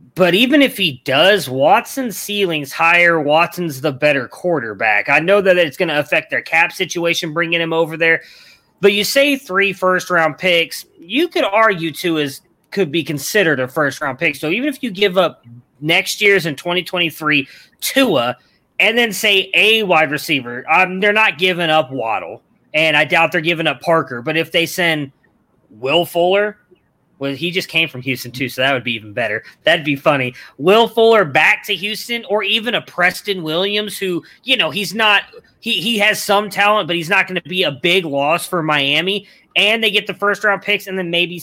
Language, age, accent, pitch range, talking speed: English, 30-49, American, 155-200 Hz, 195 wpm